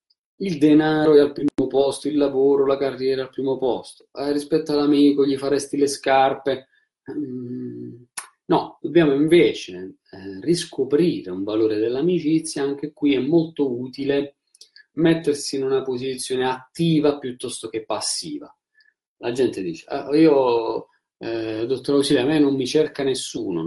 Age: 30-49